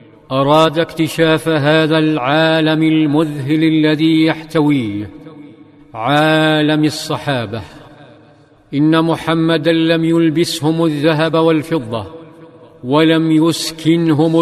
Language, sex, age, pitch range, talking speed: Arabic, male, 50-69, 150-160 Hz, 70 wpm